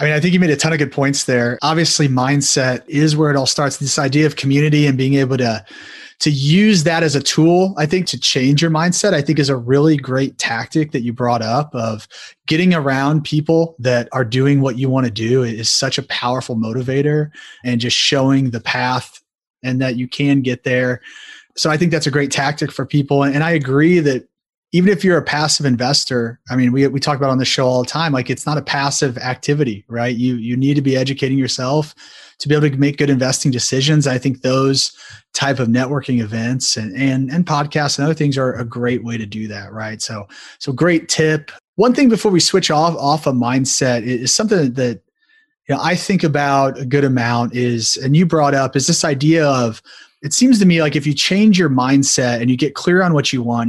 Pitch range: 125-150 Hz